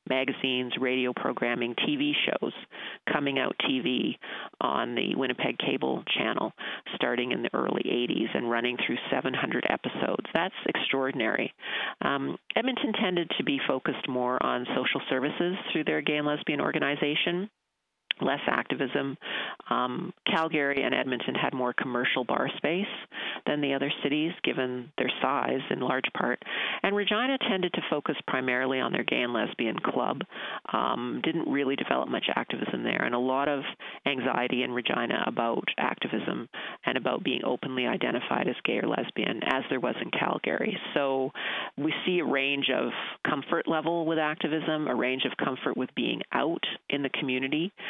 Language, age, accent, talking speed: English, 40-59, American, 155 wpm